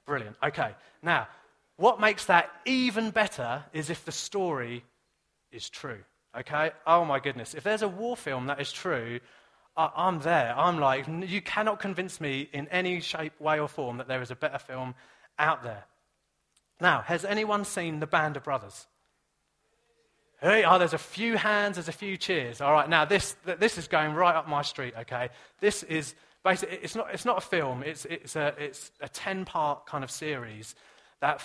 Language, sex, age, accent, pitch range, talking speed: English, male, 30-49, British, 135-180 Hz, 185 wpm